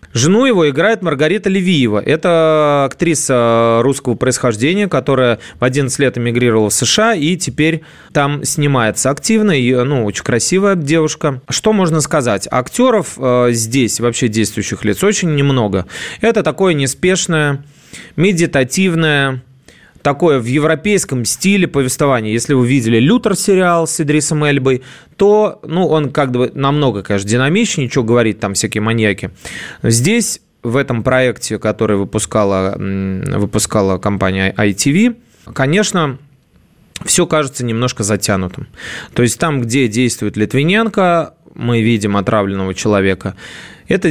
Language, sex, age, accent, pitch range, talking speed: Russian, male, 30-49, native, 115-160 Hz, 120 wpm